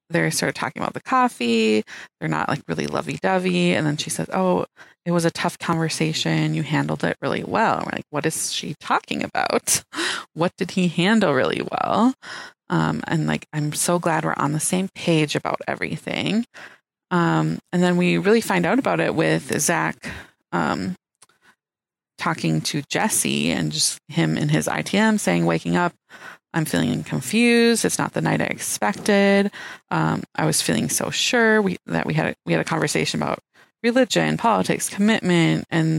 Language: English